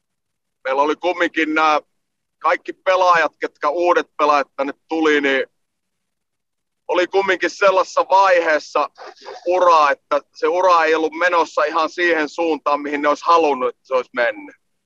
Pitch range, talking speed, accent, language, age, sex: 150-195 Hz, 135 wpm, native, Finnish, 30-49, male